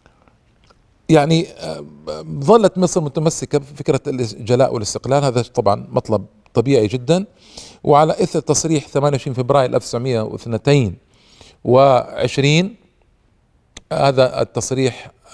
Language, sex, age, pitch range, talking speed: Arabic, male, 40-59, 120-150 Hz, 80 wpm